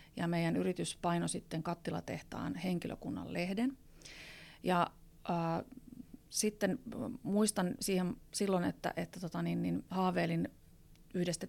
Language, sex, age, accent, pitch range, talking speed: Finnish, female, 30-49, native, 170-200 Hz, 110 wpm